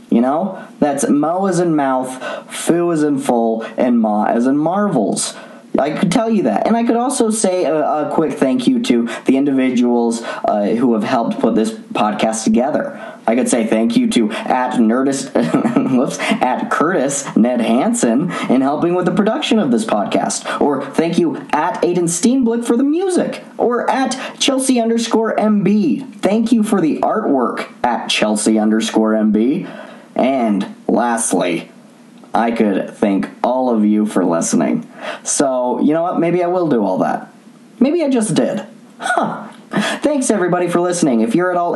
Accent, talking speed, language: American, 170 wpm, English